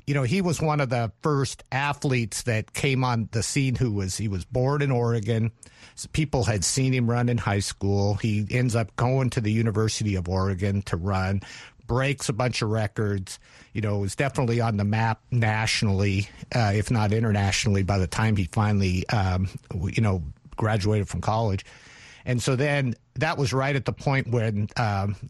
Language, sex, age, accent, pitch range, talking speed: English, male, 50-69, American, 100-125 Hz, 190 wpm